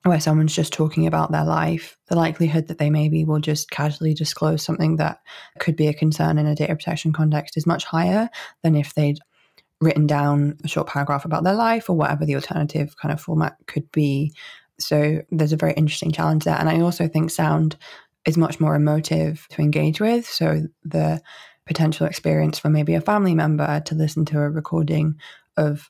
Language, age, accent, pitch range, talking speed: English, 20-39, British, 150-160 Hz, 195 wpm